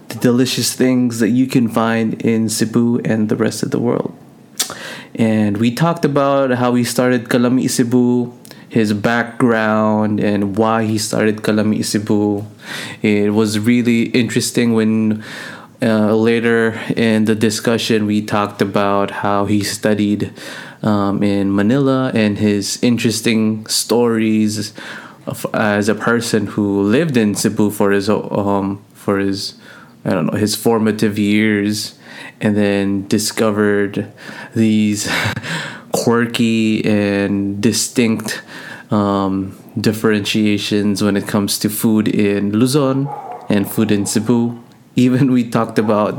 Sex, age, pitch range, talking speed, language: male, 20-39, 105-115 Hz, 125 wpm, English